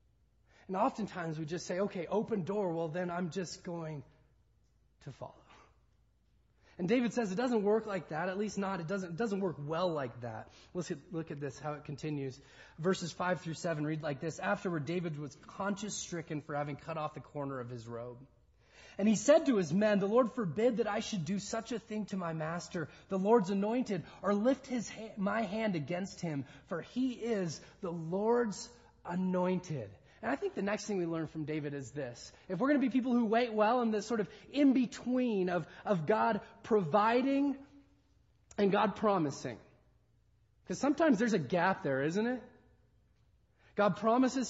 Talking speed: 190 wpm